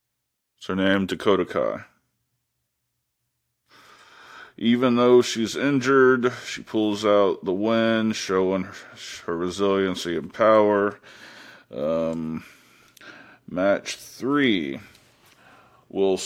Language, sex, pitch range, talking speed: English, male, 95-120 Hz, 80 wpm